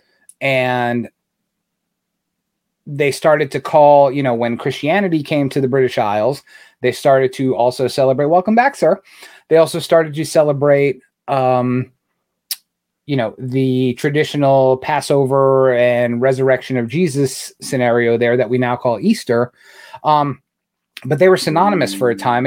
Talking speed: 140 wpm